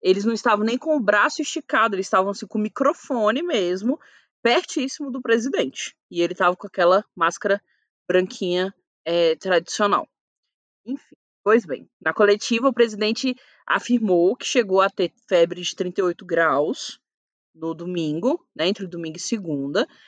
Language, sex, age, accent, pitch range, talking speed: Portuguese, female, 20-39, Brazilian, 180-255 Hz, 145 wpm